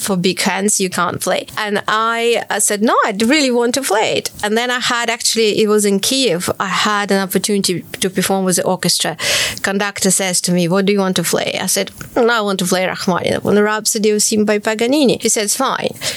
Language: Ukrainian